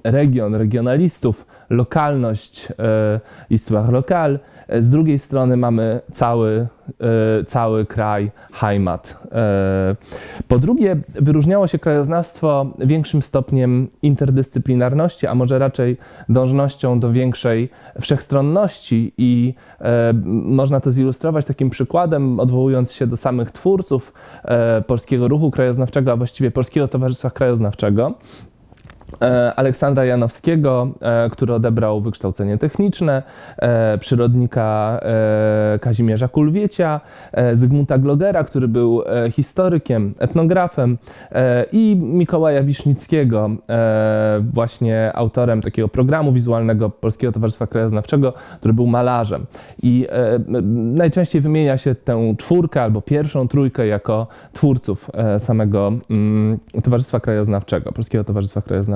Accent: native